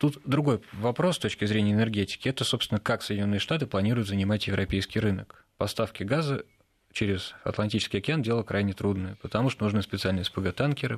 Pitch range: 105-125 Hz